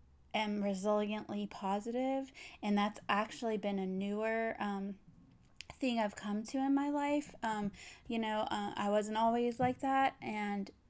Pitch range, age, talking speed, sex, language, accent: 195-215 Hz, 20-39, 150 wpm, female, English, American